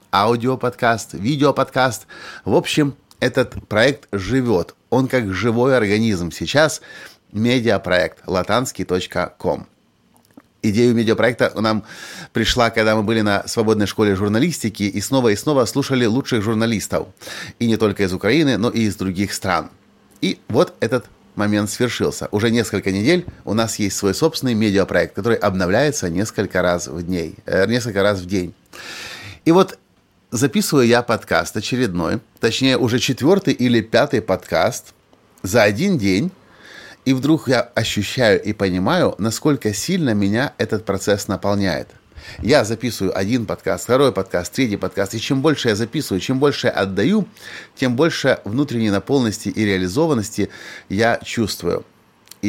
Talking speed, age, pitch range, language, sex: 135 wpm, 30-49, 100-130 Hz, Russian, male